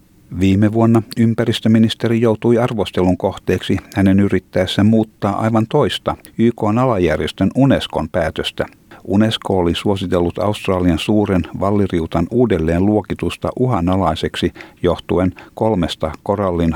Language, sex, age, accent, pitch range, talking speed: Finnish, male, 60-79, native, 90-105 Hz, 95 wpm